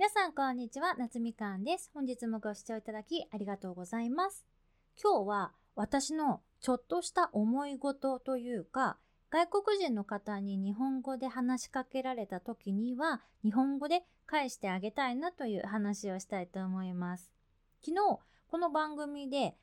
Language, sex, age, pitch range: Japanese, female, 20-39, 215-330 Hz